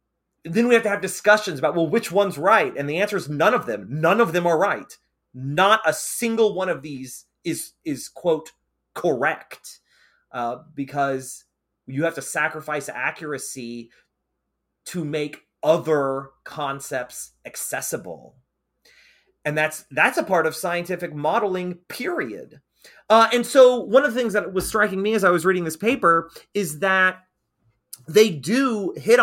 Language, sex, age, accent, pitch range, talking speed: English, male, 30-49, American, 150-200 Hz, 155 wpm